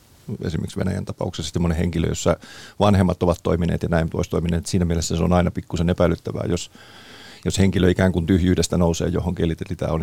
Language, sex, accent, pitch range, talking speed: Finnish, male, native, 85-100 Hz, 185 wpm